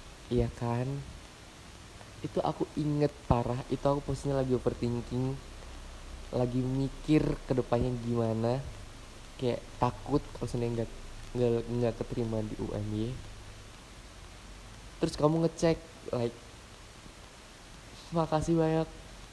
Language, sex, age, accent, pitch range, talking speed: Indonesian, male, 20-39, native, 110-135 Hz, 90 wpm